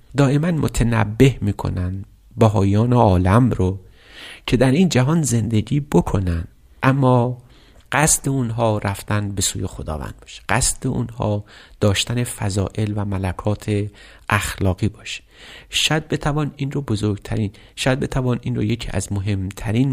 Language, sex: Persian, male